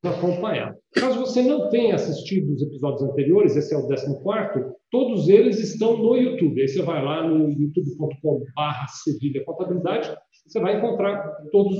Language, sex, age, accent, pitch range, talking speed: Portuguese, male, 50-69, Brazilian, 150-205 Hz, 160 wpm